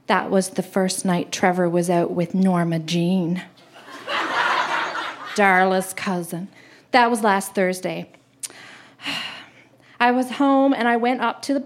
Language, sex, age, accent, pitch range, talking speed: English, female, 40-59, American, 195-275 Hz, 135 wpm